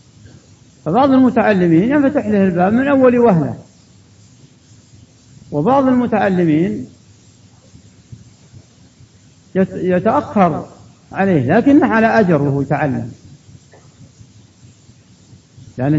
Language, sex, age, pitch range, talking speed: Arabic, male, 50-69, 115-195 Hz, 70 wpm